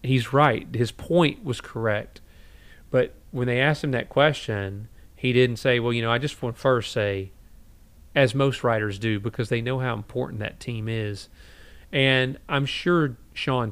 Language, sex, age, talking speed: English, male, 40-59, 180 wpm